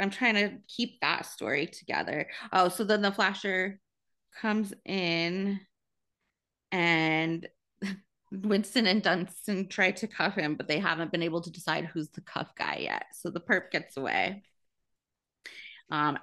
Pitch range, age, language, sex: 165-210 Hz, 20-39, English, female